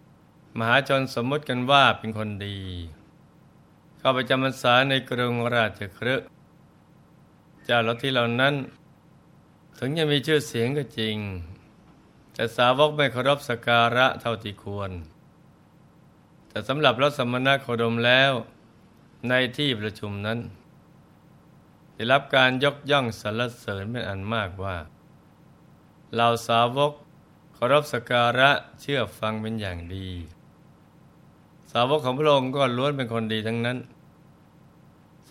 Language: Thai